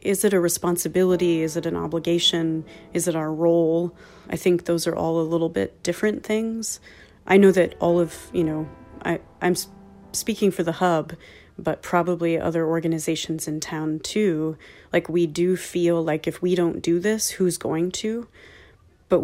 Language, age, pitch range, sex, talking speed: English, 30-49, 160-180 Hz, female, 170 wpm